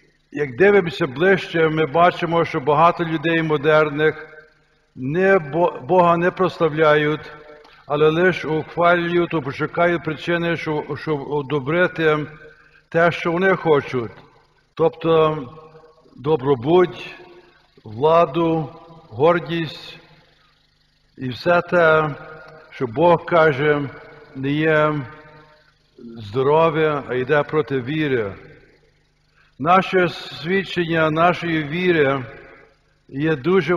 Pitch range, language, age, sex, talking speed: 150-175 Hz, Ukrainian, 60-79, male, 80 wpm